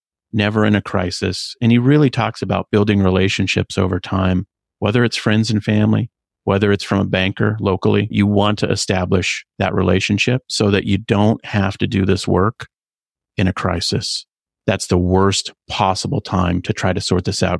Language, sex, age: English, male, 30-49